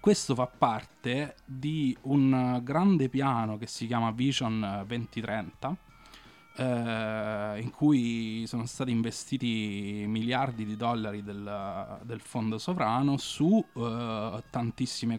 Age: 20-39